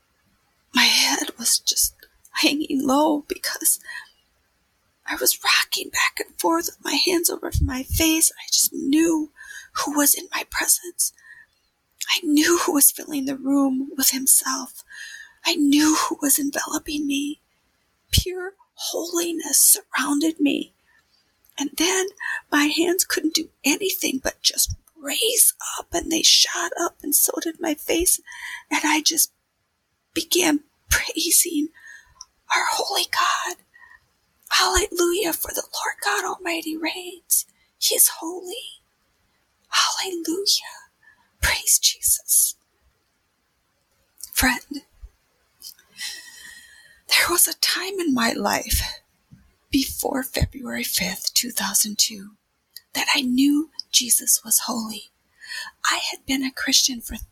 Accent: American